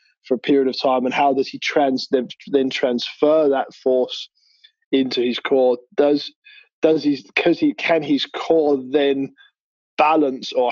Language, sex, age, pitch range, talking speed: English, male, 20-39, 130-150 Hz, 155 wpm